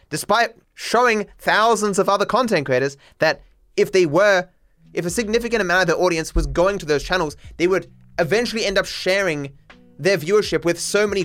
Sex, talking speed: male, 180 wpm